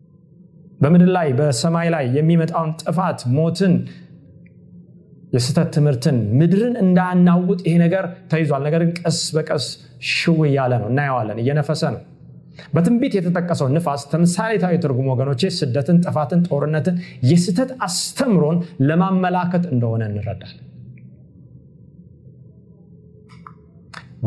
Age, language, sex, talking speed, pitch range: 30-49, Amharic, male, 90 wpm, 130-175 Hz